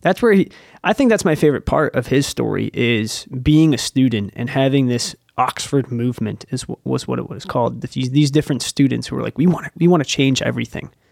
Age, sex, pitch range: 20-39, male, 120-145 Hz